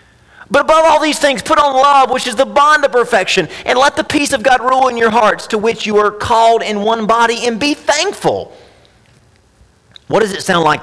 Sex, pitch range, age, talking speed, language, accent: male, 145-245 Hz, 40-59, 220 wpm, English, American